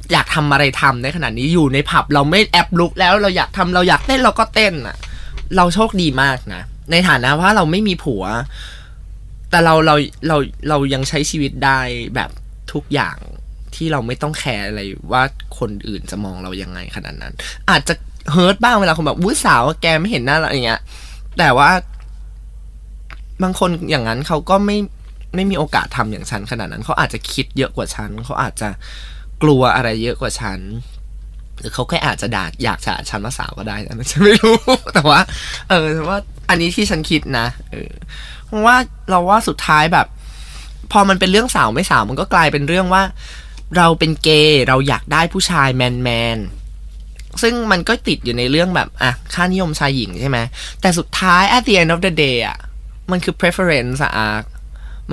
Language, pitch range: Thai, 115-175 Hz